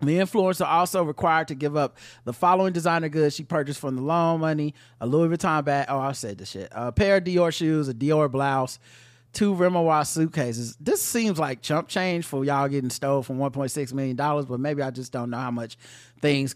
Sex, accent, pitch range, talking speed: male, American, 130-180 Hz, 215 wpm